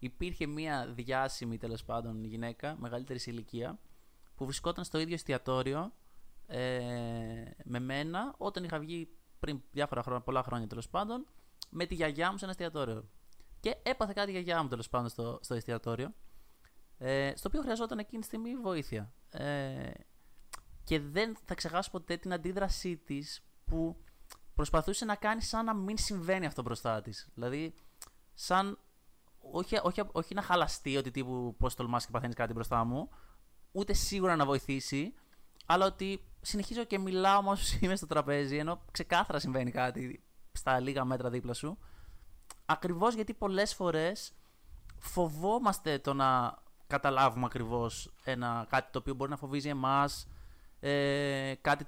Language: Greek